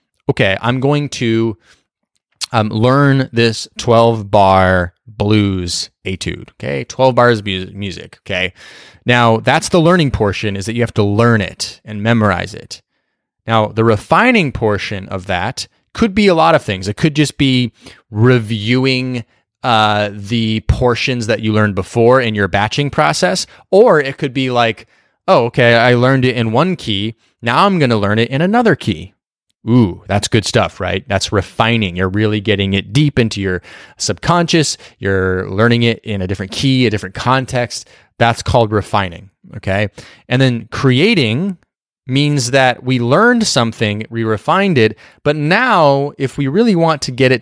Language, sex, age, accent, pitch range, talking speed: English, male, 30-49, American, 105-130 Hz, 165 wpm